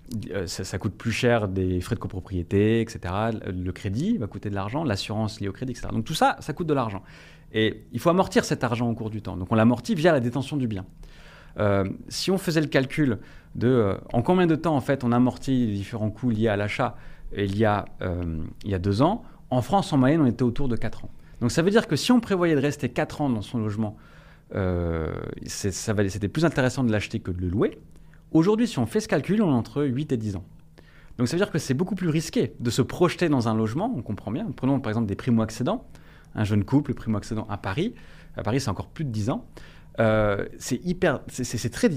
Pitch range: 105-150 Hz